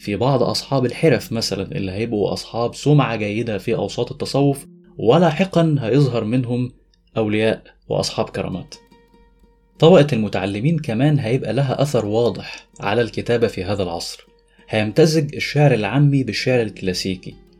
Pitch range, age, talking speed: 105-140 Hz, 20-39, 125 wpm